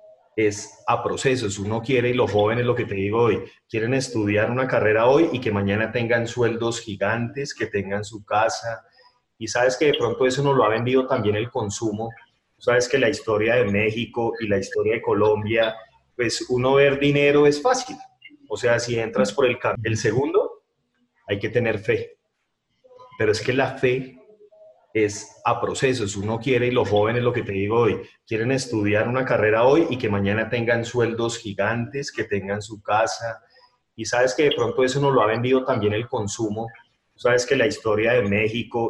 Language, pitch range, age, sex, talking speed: Spanish, 110-145 Hz, 30-49, male, 190 wpm